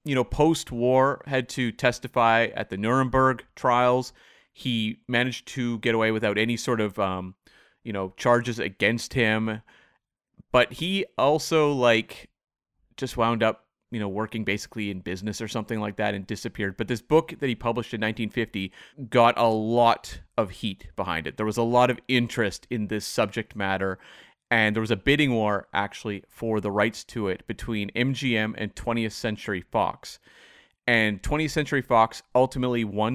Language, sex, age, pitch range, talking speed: English, male, 30-49, 105-125 Hz, 170 wpm